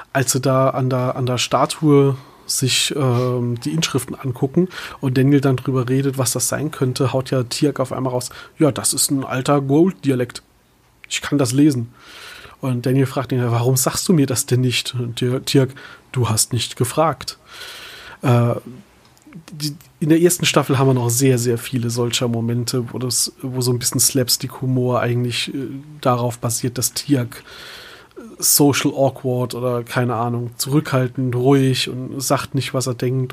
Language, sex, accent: German, male, German